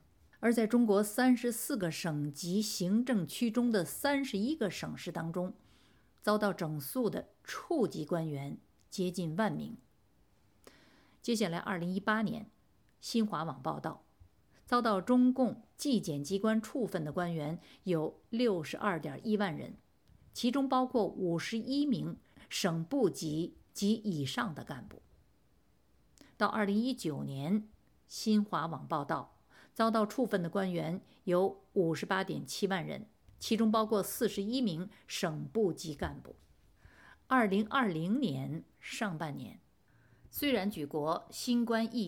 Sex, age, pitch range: female, 50-69, 165-230 Hz